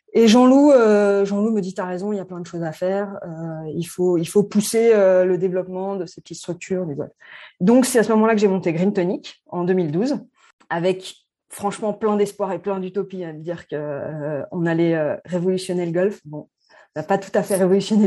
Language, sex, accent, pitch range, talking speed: French, female, French, 180-220 Hz, 235 wpm